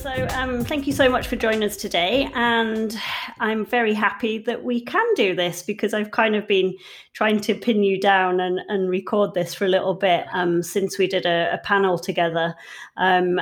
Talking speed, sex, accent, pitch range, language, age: 205 wpm, female, British, 175-215 Hz, English, 30-49